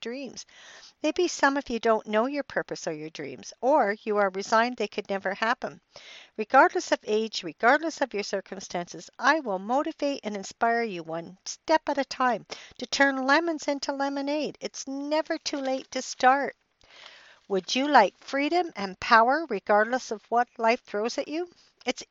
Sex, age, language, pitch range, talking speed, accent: female, 60-79, English, 210-280 Hz, 170 wpm, American